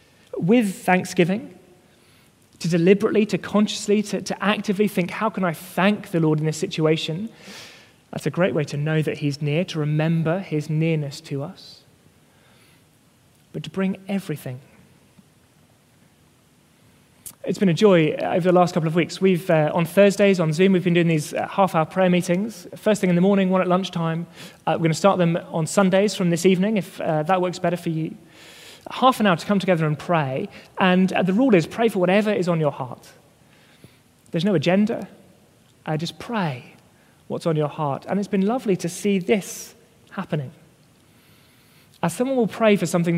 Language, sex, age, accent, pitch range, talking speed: English, male, 20-39, British, 160-195 Hz, 180 wpm